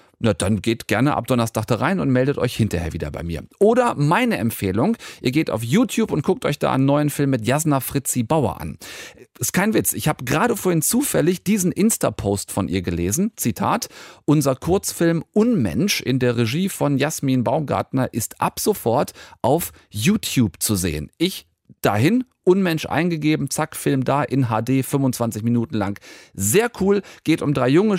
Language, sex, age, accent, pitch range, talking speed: German, male, 40-59, German, 115-165 Hz, 175 wpm